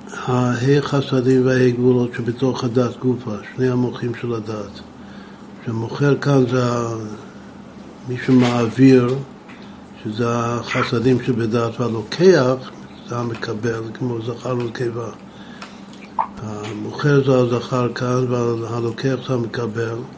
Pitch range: 120-140 Hz